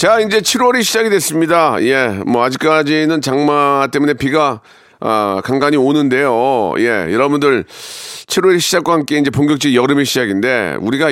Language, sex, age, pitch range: Korean, male, 40-59, 125-180 Hz